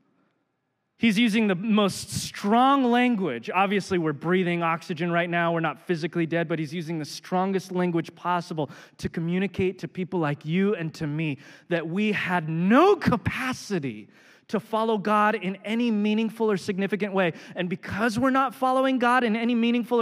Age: 20-39